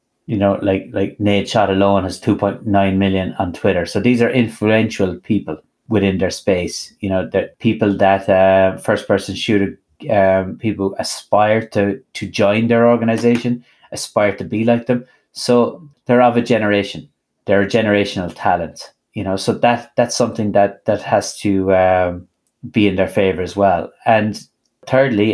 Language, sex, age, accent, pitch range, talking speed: English, male, 30-49, Irish, 100-120 Hz, 165 wpm